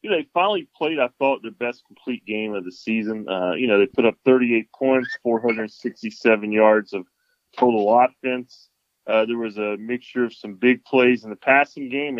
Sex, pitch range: male, 115-140 Hz